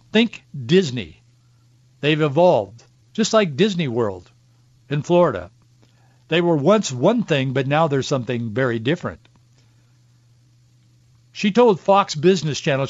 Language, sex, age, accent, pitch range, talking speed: English, male, 60-79, American, 120-170 Hz, 120 wpm